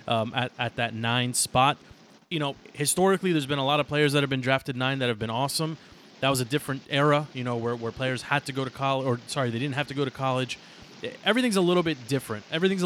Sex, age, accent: male, 30-49, American